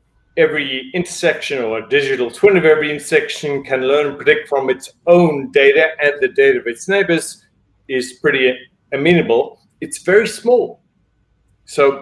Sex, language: male, English